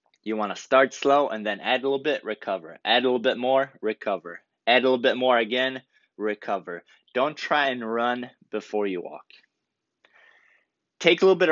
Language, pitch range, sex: English, 115-140 Hz, male